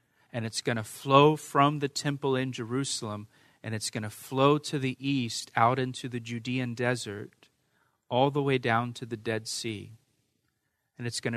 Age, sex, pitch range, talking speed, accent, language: 40-59, male, 120-140 Hz, 180 wpm, American, English